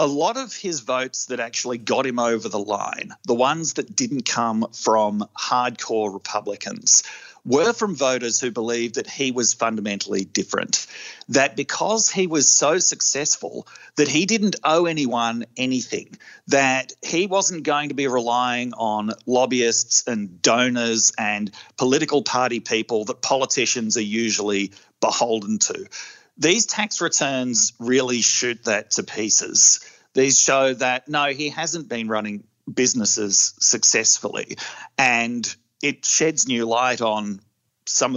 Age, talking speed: 40-59, 140 wpm